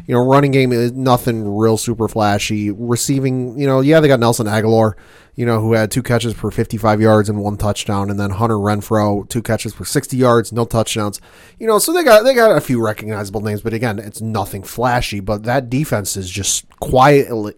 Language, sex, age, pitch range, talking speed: English, male, 30-49, 110-140 Hz, 210 wpm